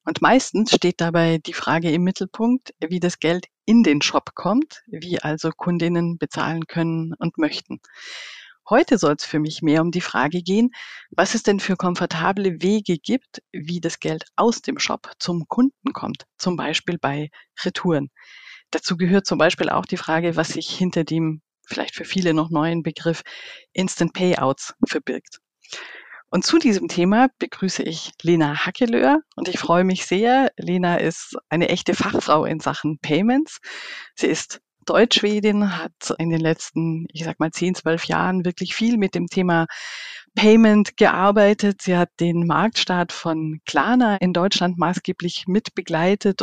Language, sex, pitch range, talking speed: German, female, 160-205 Hz, 160 wpm